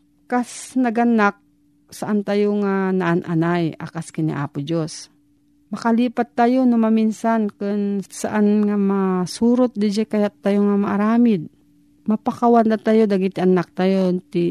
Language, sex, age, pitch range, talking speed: Filipino, female, 40-59, 170-215 Hz, 125 wpm